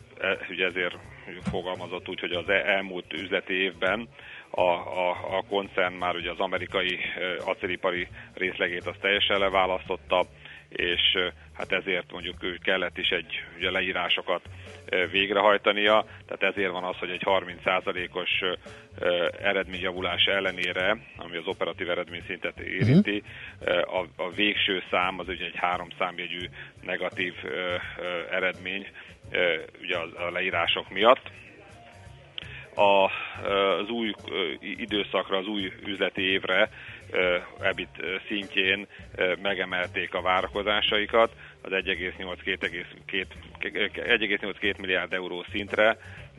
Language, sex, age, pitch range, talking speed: Hungarian, male, 40-59, 90-100 Hz, 105 wpm